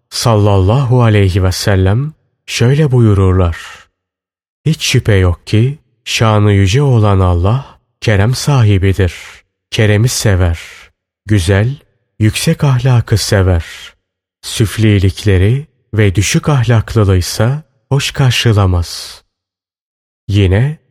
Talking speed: 85 wpm